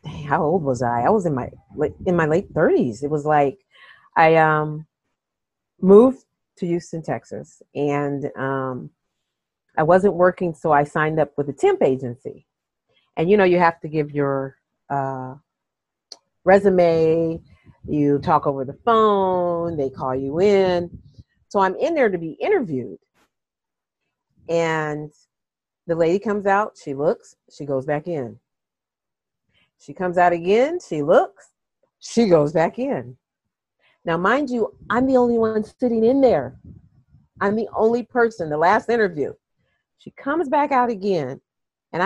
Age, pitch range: 40-59, 150-210 Hz